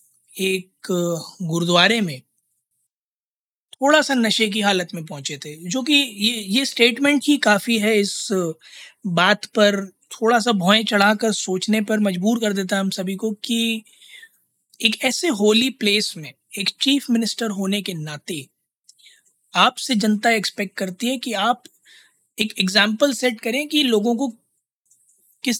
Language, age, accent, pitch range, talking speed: Hindi, 20-39, native, 185-225 Hz, 145 wpm